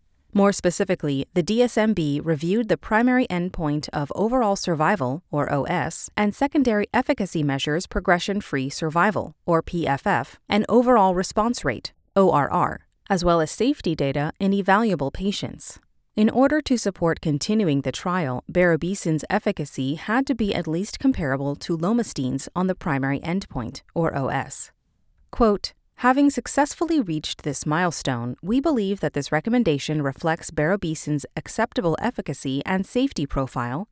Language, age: English, 30-49